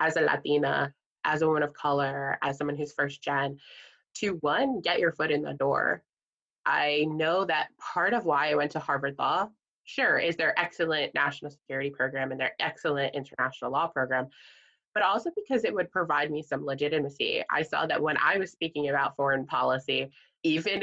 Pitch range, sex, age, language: 145-185 Hz, female, 20-39, English